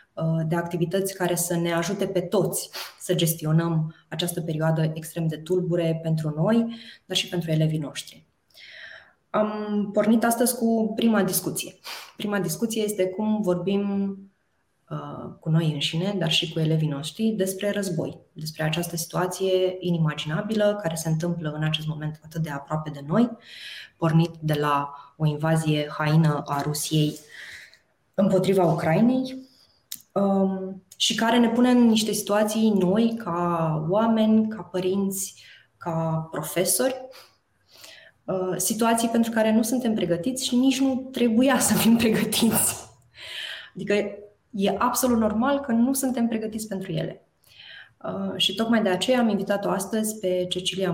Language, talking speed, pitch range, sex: Romanian, 135 wpm, 165-220 Hz, female